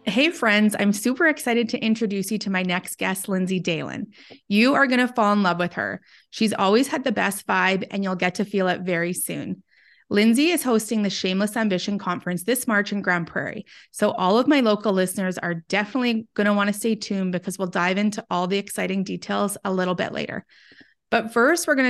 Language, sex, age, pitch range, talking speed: English, female, 30-49, 185-225 Hz, 215 wpm